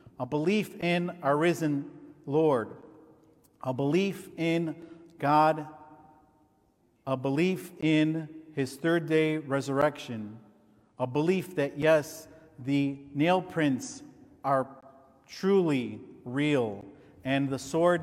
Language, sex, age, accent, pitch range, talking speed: English, male, 50-69, American, 140-165 Hz, 100 wpm